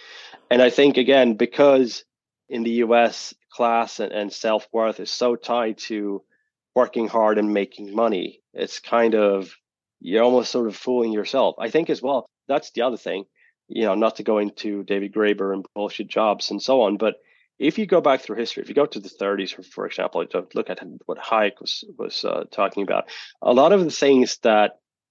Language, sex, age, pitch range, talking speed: English, male, 30-49, 105-125 Hz, 200 wpm